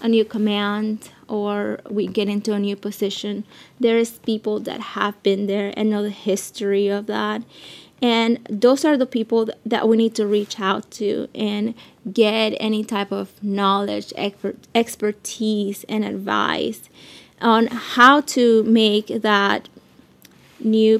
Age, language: 20-39, English